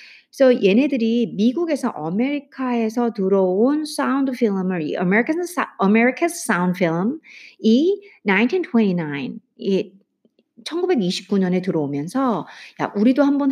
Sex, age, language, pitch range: female, 50-69, Korean, 195-280 Hz